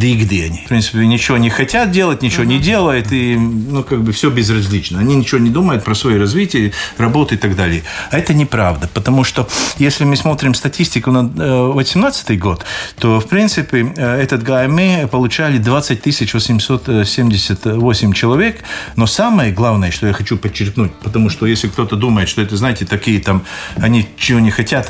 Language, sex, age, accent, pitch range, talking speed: Russian, male, 40-59, native, 105-130 Hz, 175 wpm